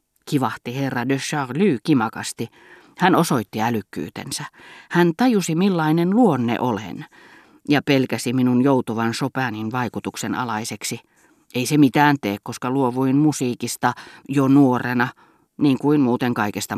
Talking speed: 120 wpm